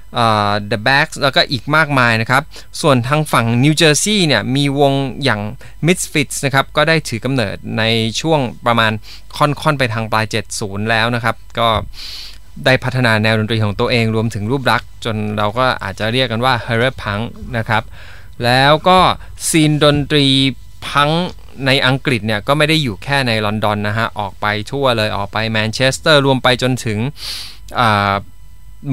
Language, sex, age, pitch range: Thai, male, 20-39, 110-140 Hz